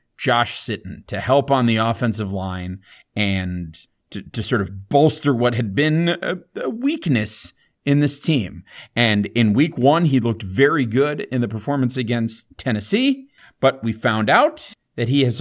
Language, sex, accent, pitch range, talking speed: English, male, American, 115-165 Hz, 170 wpm